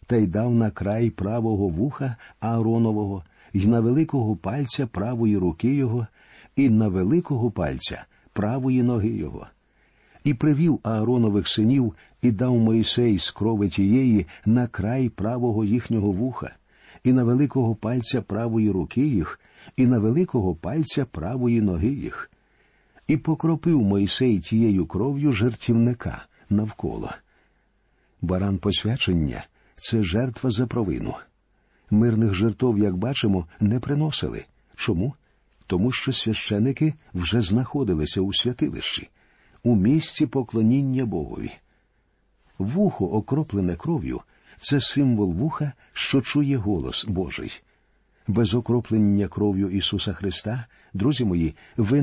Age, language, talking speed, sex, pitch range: 50-69, Ukrainian, 115 wpm, male, 100-130 Hz